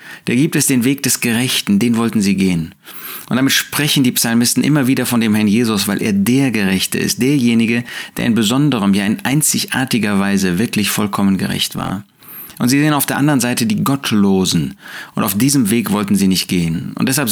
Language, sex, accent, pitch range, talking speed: German, male, German, 100-140 Hz, 200 wpm